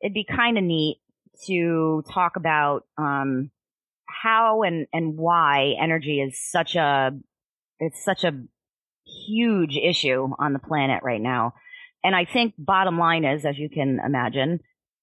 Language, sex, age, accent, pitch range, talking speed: English, female, 30-49, American, 140-175 Hz, 150 wpm